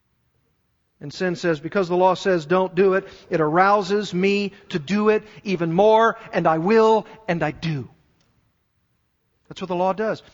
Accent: American